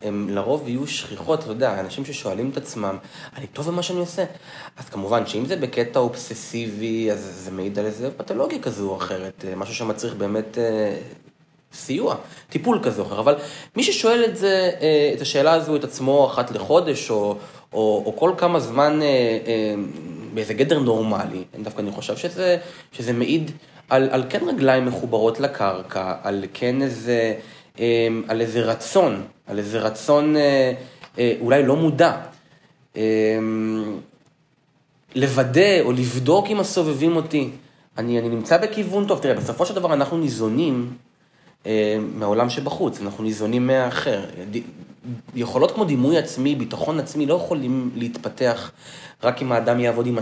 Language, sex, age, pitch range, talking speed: Hebrew, male, 20-39, 110-150 Hz, 155 wpm